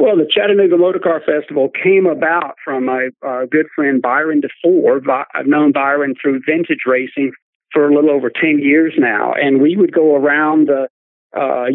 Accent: American